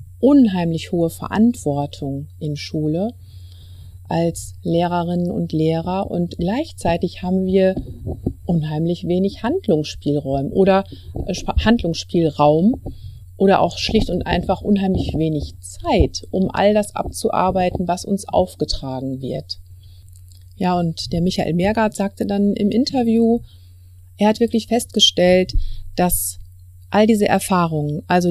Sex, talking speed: female, 110 wpm